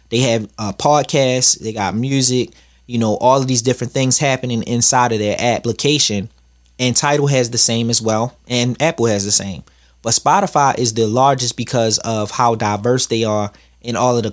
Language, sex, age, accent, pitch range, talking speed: English, male, 20-39, American, 105-125 Hz, 195 wpm